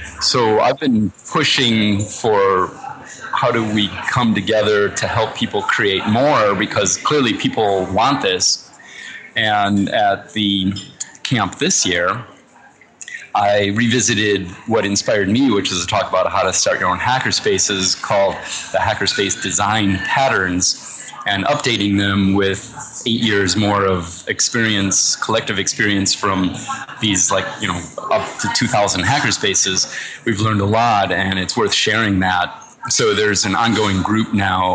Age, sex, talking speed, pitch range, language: 30-49, male, 140 wpm, 95-110 Hz, English